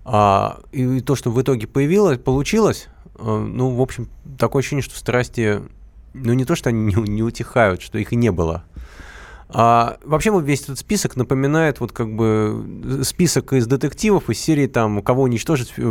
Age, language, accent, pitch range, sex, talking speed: 20-39, Russian, native, 105-130 Hz, male, 175 wpm